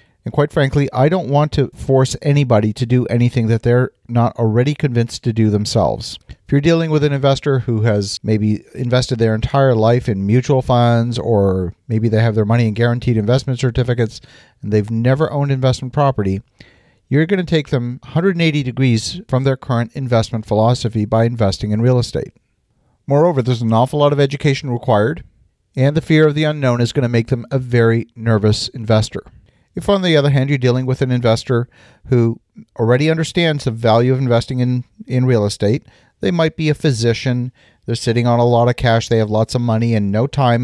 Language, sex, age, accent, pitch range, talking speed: English, male, 40-59, American, 115-135 Hz, 195 wpm